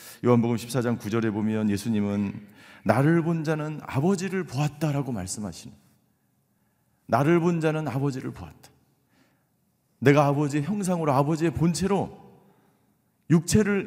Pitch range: 115-160 Hz